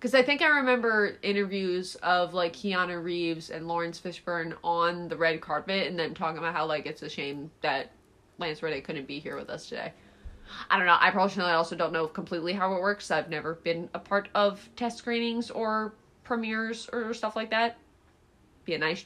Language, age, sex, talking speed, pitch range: English, 20-39, female, 200 wpm, 165-200 Hz